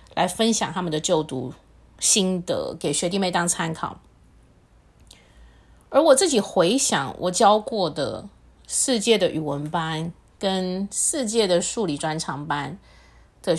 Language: Chinese